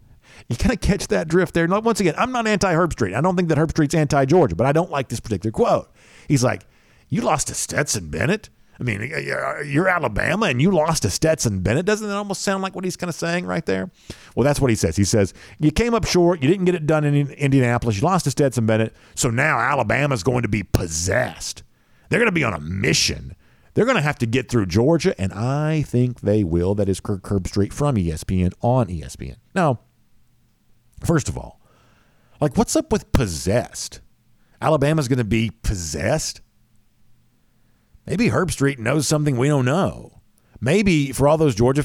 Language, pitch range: English, 110-165 Hz